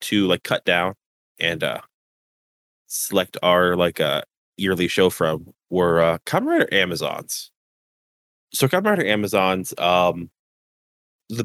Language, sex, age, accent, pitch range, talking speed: English, male, 20-39, American, 90-105 Hz, 130 wpm